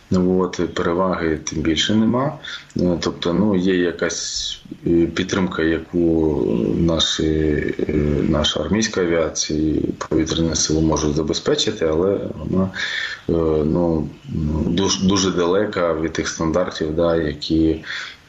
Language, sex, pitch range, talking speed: Ukrainian, male, 75-85 Hz, 100 wpm